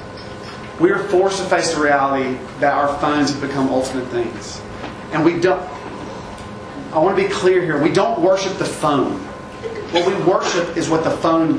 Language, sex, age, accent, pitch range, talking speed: English, male, 40-59, American, 150-190 Hz, 180 wpm